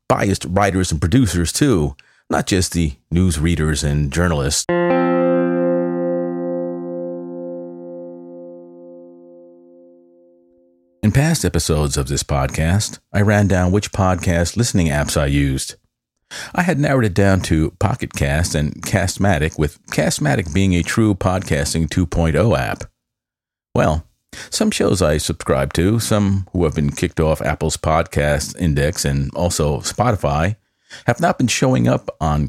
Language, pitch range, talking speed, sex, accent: English, 80-95 Hz, 125 wpm, male, American